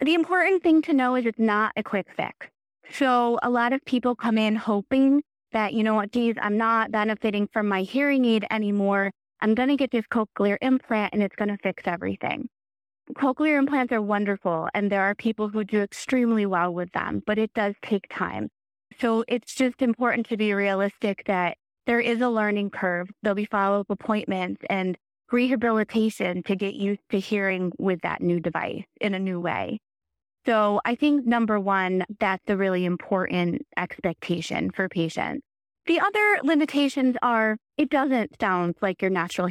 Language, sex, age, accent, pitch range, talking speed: English, female, 20-39, American, 190-230 Hz, 180 wpm